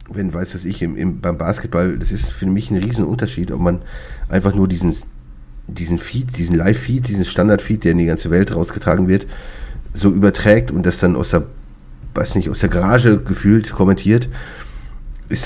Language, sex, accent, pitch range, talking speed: German, male, German, 80-100 Hz, 180 wpm